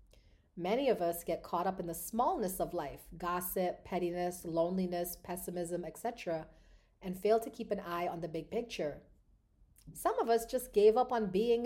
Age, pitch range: 40-59, 175-225 Hz